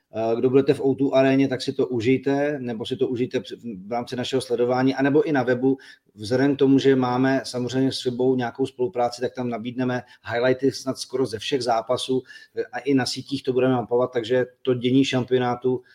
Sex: male